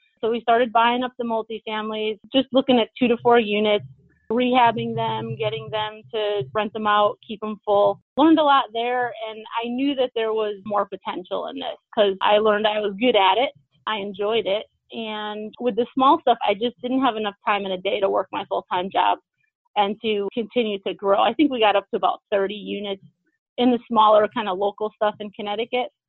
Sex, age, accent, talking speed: female, 30-49, American, 210 wpm